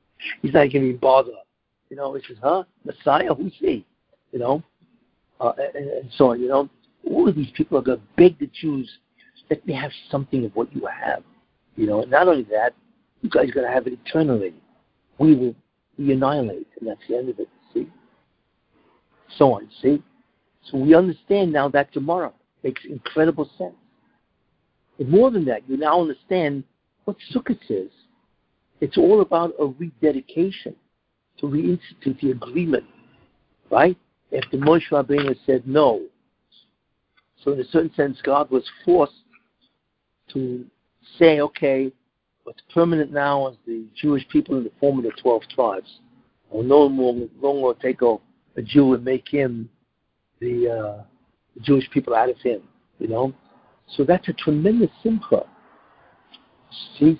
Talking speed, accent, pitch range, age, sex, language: 160 wpm, American, 130-170 Hz, 60-79, male, English